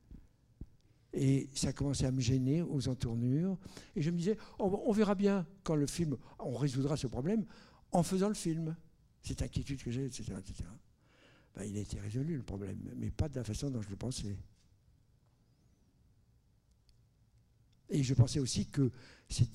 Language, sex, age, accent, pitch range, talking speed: French, male, 60-79, French, 115-150 Hz, 170 wpm